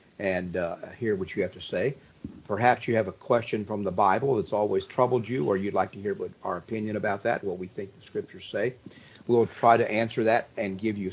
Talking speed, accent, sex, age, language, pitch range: 230 wpm, American, male, 50-69, English, 105-125 Hz